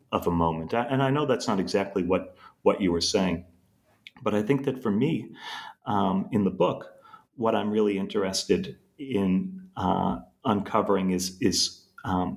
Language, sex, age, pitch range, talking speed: English, male, 40-59, 95-130 Hz, 165 wpm